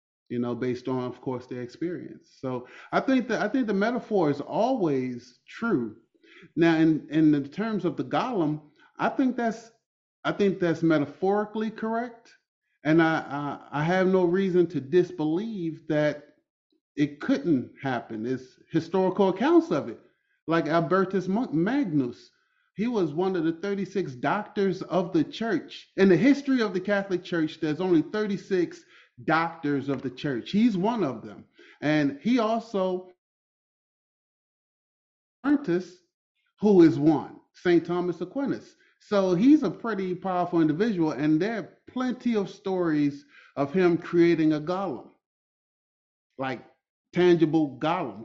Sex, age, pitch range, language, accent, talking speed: male, 30-49, 150-210 Hz, English, American, 145 wpm